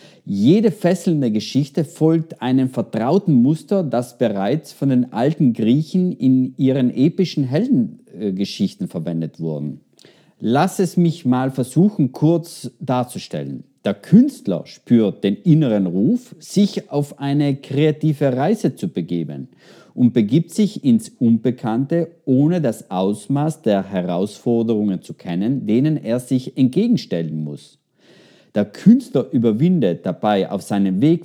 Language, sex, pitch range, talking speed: German, male, 120-175 Hz, 125 wpm